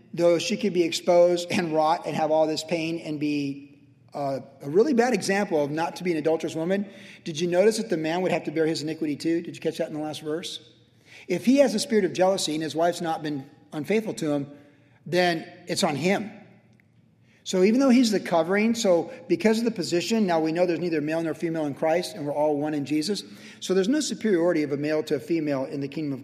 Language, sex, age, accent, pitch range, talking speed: English, male, 40-59, American, 155-195 Hz, 245 wpm